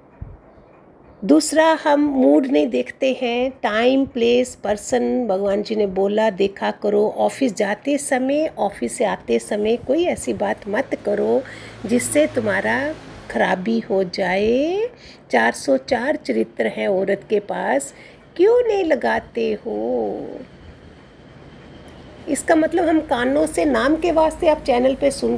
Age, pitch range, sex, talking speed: 50-69, 220-300 Hz, female, 130 wpm